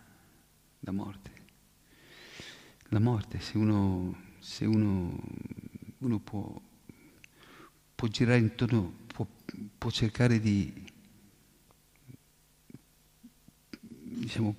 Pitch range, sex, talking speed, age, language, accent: 100-115 Hz, male, 75 wpm, 50-69, Italian, native